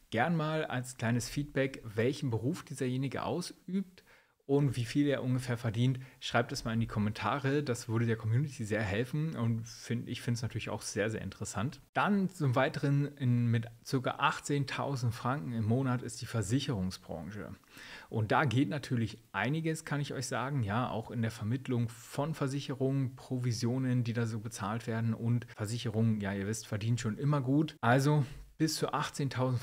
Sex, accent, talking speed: male, German, 170 wpm